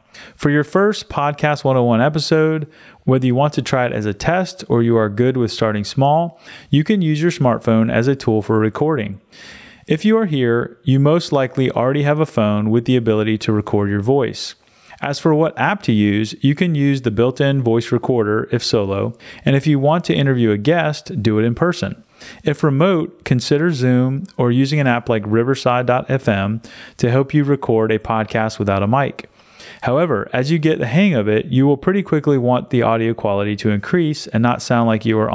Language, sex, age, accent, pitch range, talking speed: English, male, 30-49, American, 110-145 Hz, 205 wpm